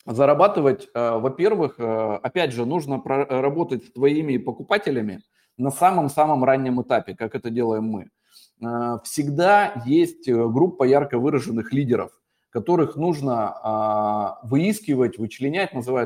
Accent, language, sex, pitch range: native, Russian, male, 120-150 Hz